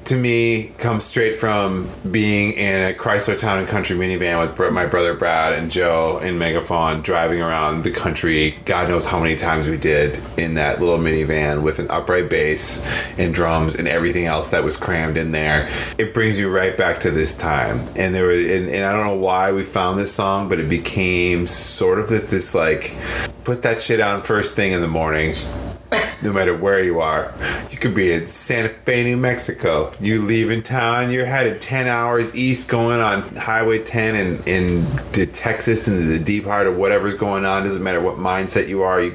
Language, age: English, 30-49